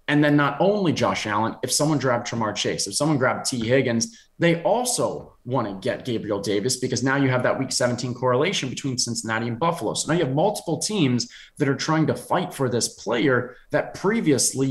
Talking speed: 210 wpm